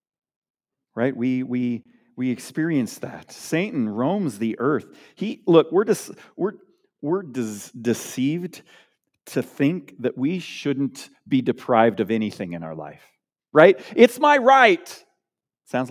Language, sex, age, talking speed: English, male, 40-59, 130 wpm